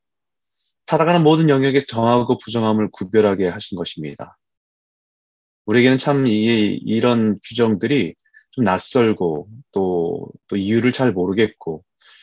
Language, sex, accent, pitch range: Korean, male, native, 95-135 Hz